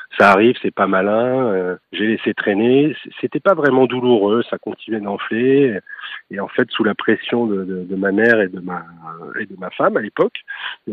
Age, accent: 40-59, French